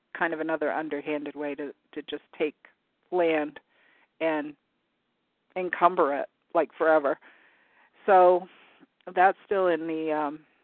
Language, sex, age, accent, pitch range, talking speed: English, female, 50-69, American, 155-180 Hz, 120 wpm